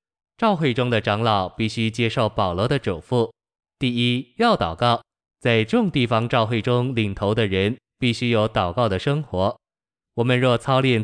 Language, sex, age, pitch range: Chinese, male, 20-39, 105-125 Hz